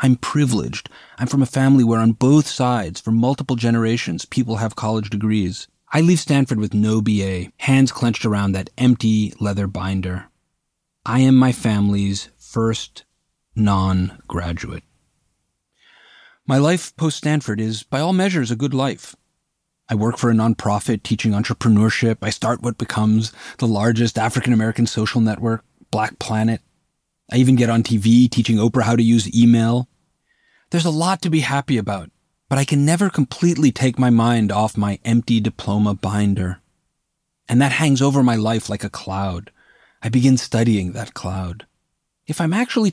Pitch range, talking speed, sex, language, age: 105-135 Hz, 155 wpm, male, English, 30-49